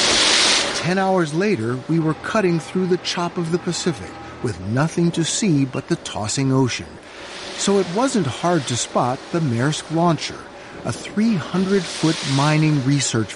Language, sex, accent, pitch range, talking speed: English, male, American, 110-175 Hz, 150 wpm